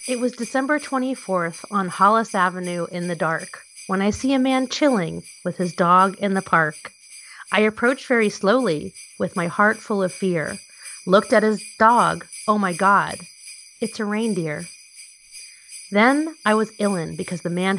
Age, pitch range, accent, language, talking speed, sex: 30-49, 180-230 Hz, American, English, 165 wpm, female